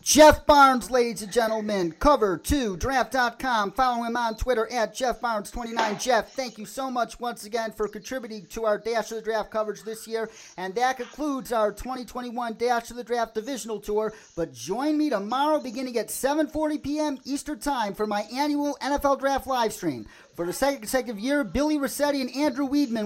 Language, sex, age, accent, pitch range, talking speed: English, male, 40-59, American, 220-275 Hz, 185 wpm